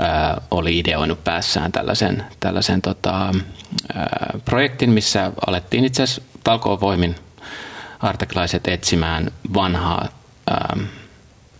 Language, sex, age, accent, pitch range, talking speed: Finnish, male, 30-49, native, 85-100 Hz, 85 wpm